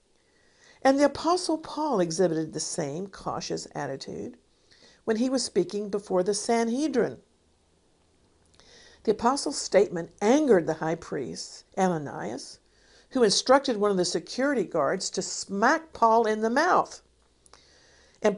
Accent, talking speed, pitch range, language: American, 125 wpm, 185-265 Hz, English